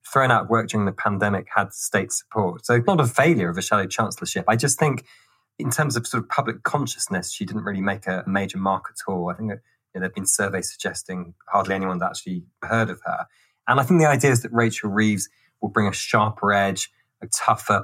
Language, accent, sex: English, British, male